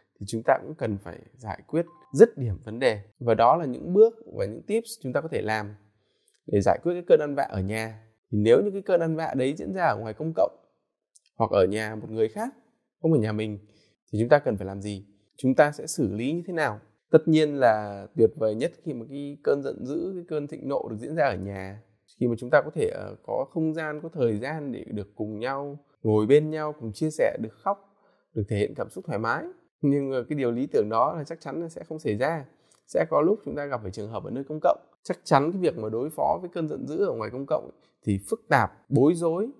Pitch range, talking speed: 115-180 Hz, 260 wpm